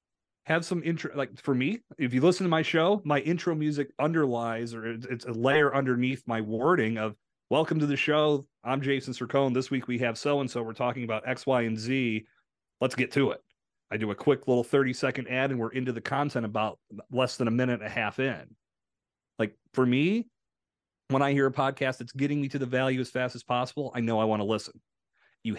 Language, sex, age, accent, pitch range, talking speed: English, male, 30-49, American, 115-140 Hz, 220 wpm